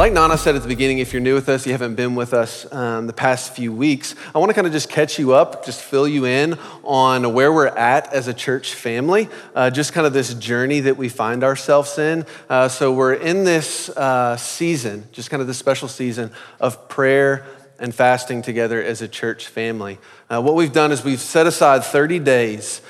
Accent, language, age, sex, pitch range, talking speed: American, English, 30-49, male, 125-145 Hz, 220 wpm